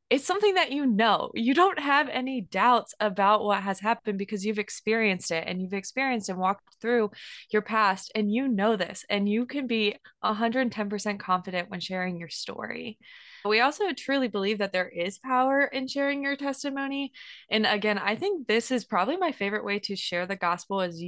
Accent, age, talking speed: American, 20-39, 190 wpm